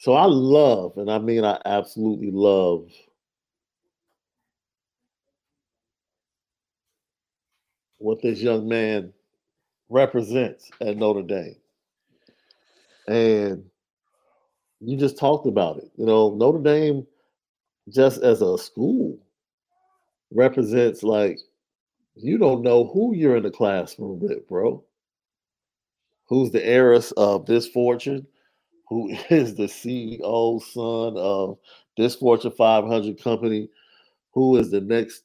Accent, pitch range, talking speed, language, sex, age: American, 105-130 Hz, 105 wpm, English, male, 50-69